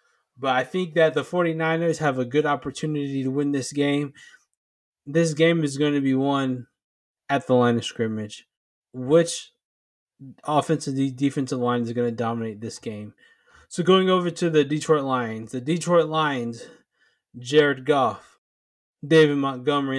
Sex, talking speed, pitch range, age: male, 150 wpm, 130-155 Hz, 20-39